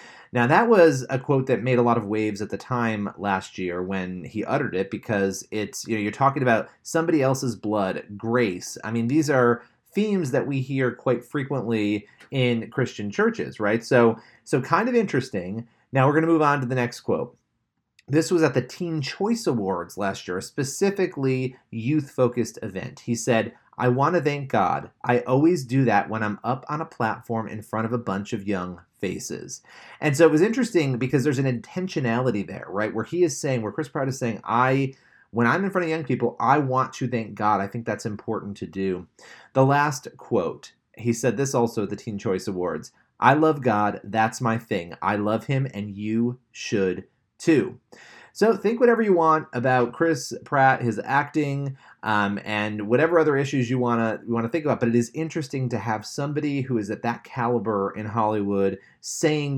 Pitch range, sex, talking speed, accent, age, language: 110-140 Hz, male, 200 wpm, American, 30-49, English